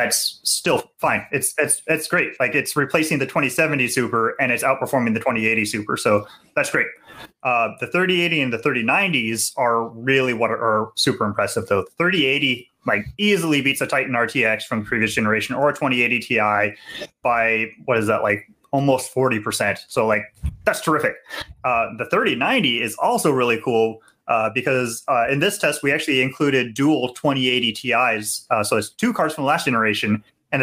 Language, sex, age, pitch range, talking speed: English, male, 30-49, 115-155 Hz, 180 wpm